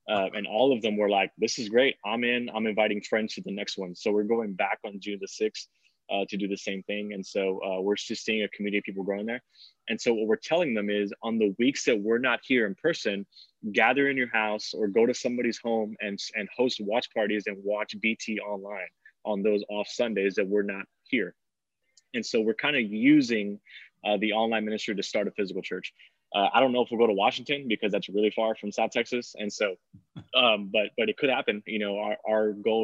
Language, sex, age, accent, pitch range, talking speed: English, male, 20-39, American, 100-110 Hz, 240 wpm